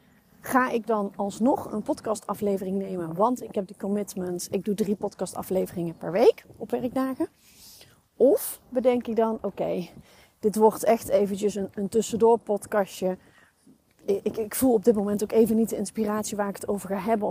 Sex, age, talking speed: female, 30-49, 175 wpm